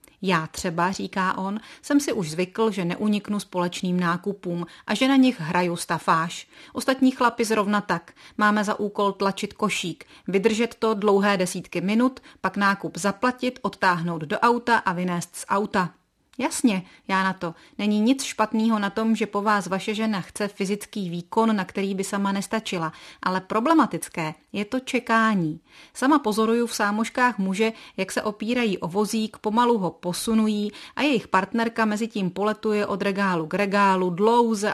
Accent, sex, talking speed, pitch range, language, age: native, female, 160 wpm, 180-225 Hz, Czech, 30-49